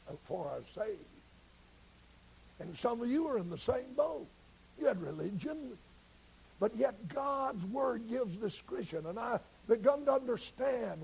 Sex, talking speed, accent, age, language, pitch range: male, 140 wpm, American, 60-79, English, 175-275 Hz